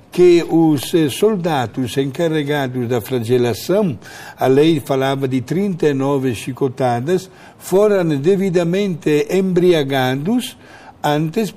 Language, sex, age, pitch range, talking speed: Portuguese, male, 60-79, 135-195 Hz, 85 wpm